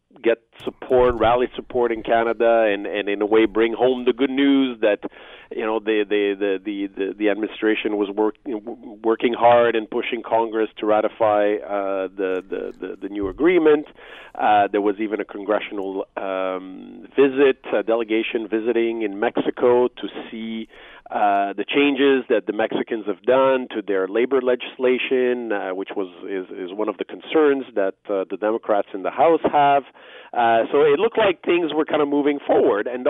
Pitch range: 115-145 Hz